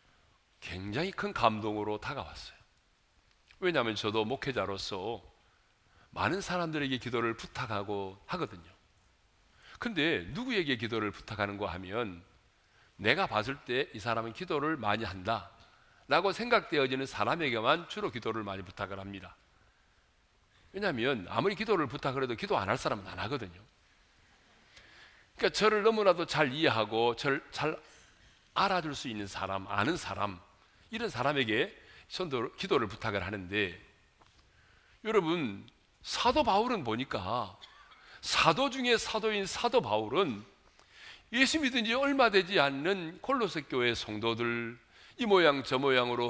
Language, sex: Korean, male